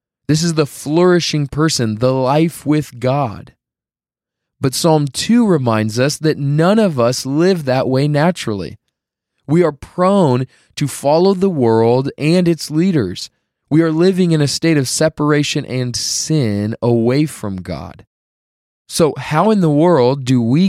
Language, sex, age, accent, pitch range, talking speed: English, male, 20-39, American, 110-150 Hz, 150 wpm